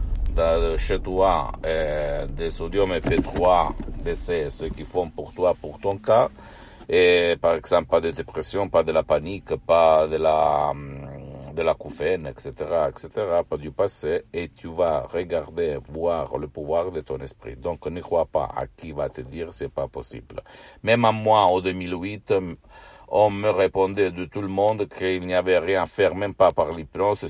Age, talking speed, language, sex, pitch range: 60-79, 180 wpm, Italian, male, 80-100 Hz